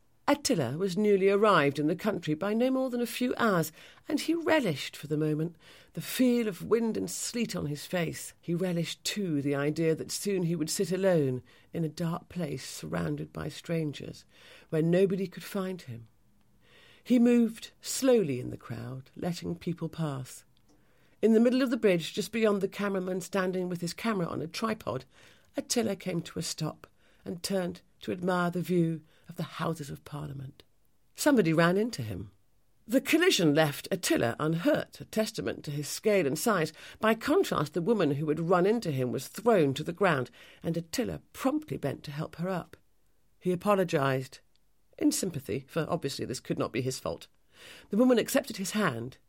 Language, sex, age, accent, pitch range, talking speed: English, female, 50-69, British, 150-215 Hz, 180 wpm